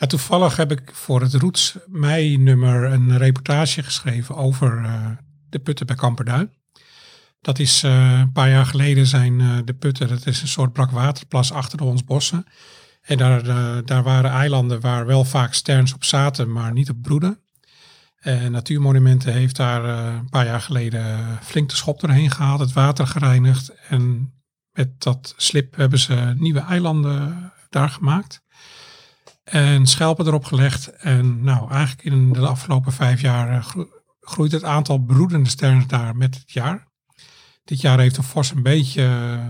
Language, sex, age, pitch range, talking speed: Dutch, male, 50-69, 125-150 Hz, 160 wpm